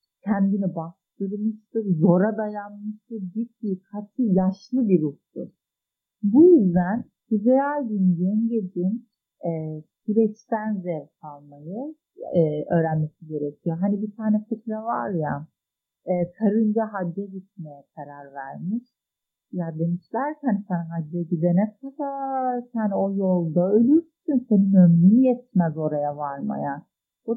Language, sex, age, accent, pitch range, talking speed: Turkish, female, 50-69, native, 175-240 Hz, 110 wpm